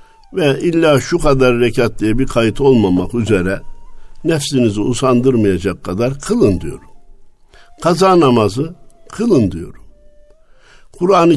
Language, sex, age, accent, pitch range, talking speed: Turkish, male, 60-79, native, 110-155 Hz, 105 wpm